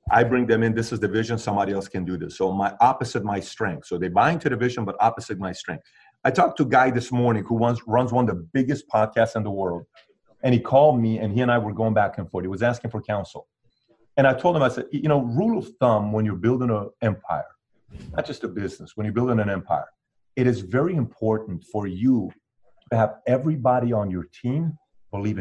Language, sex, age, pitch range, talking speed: English, male, 40-59, 105-130 Hz, 240 wpm